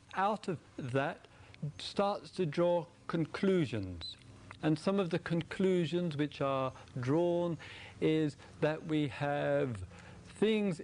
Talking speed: 110 wpm